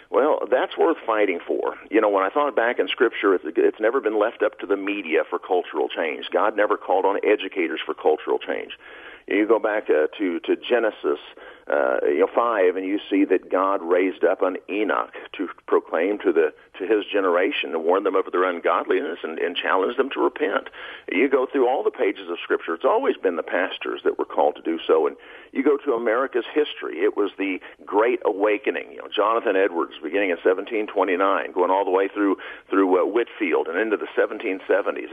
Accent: American